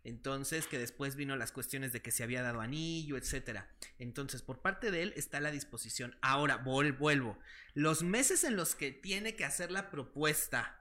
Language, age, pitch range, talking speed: Spanish, 30-49, 125-160 Hz, 195 wpm